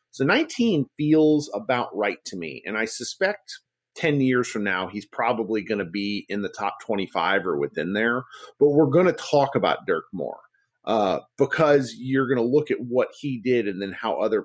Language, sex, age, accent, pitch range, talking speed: English, male, 40-59, American, 100-150 Hz, 200 wpm